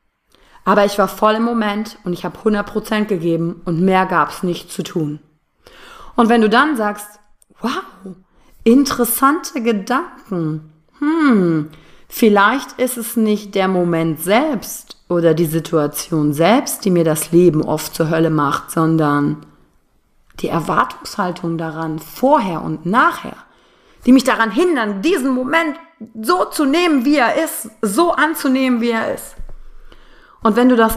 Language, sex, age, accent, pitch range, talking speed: German, female, 30-49, German, 170-245 Hz, 145 wpm